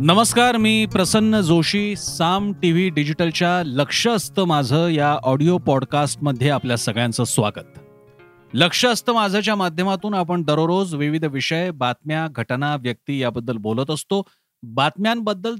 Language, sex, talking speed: Marathi, male, 125 wpm